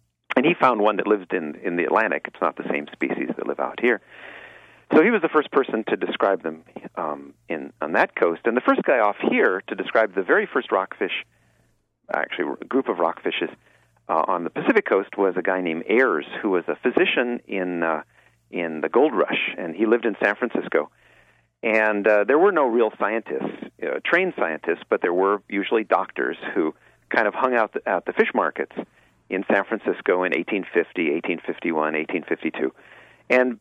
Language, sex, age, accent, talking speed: English, male, 40-59, American, 195 wpm